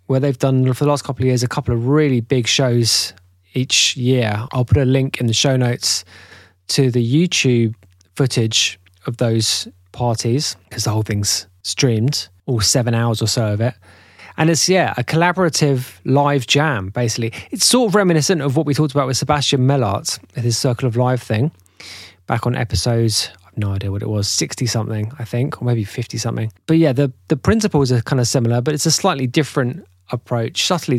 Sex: male